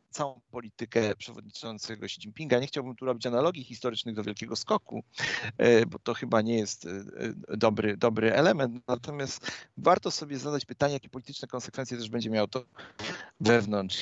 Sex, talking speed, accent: male, 150 wpm, native